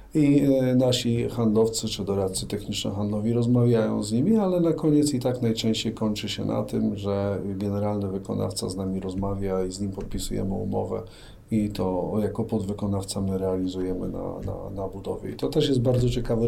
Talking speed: 170 wpm